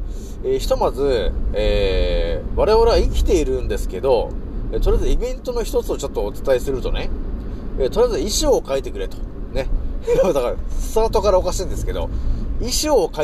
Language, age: Japanese, 40-59